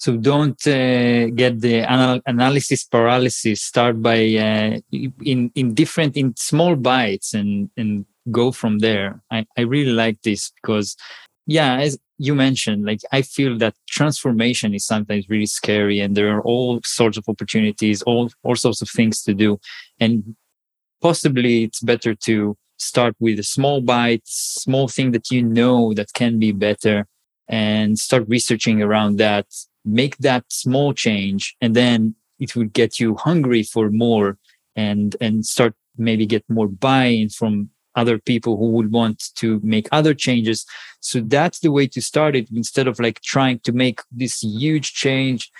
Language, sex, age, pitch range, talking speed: English, male, 20-39, 110-125 Hz, 165 wpm